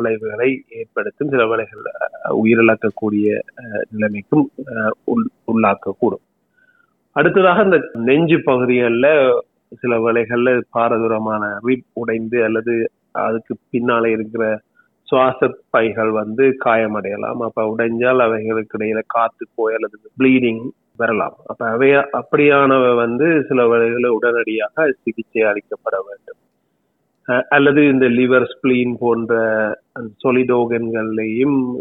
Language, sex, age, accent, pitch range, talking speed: Tamil, male, 30-49, native, 110-130 Hz, 90 wpm